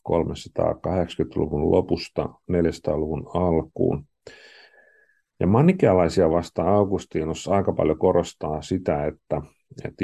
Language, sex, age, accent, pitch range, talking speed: Finnish, male, 50-69, native, 80-105 Hz, 80 wpm